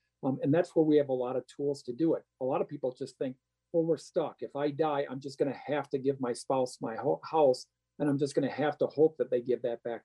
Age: 50-69